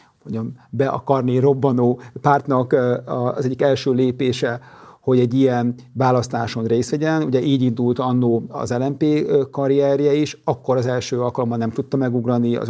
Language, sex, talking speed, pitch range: Hungarian, male, 145 wpm, 125-145 Hz